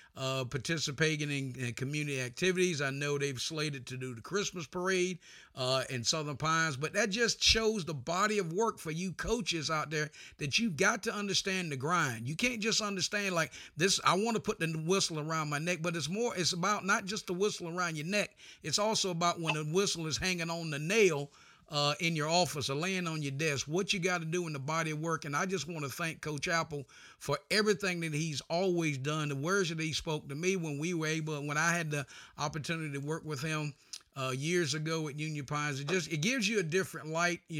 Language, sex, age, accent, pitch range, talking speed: English, male, 50-69, American, 150-185 Hz, 230 wpm